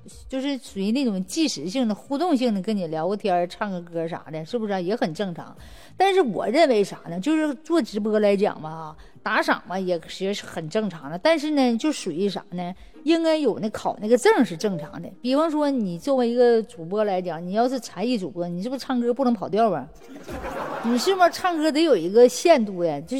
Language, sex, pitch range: Chinese, female, 195-265 Hz